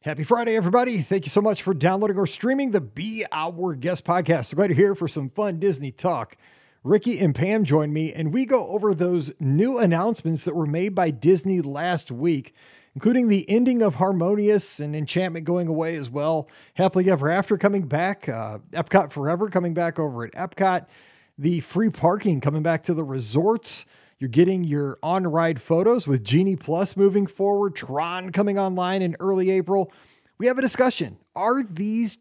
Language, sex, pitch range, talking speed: English, male, 155-205 Hz, 185 wpm